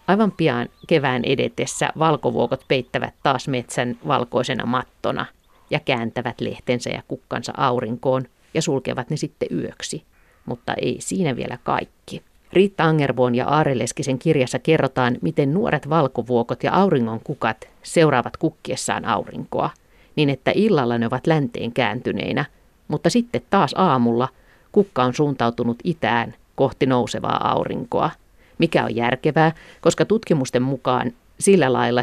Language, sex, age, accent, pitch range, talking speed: Finnish, female, 50-69, native, 125-160 Hz, 125 wpm